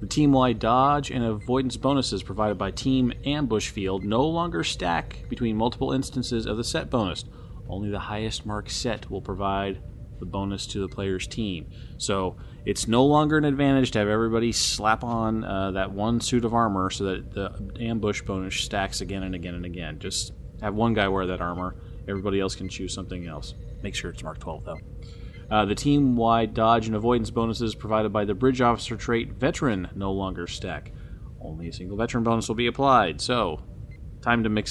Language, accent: English, American